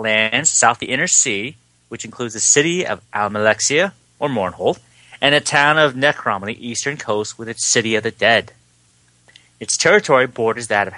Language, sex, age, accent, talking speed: English, male, 30-49, American, 185 wpm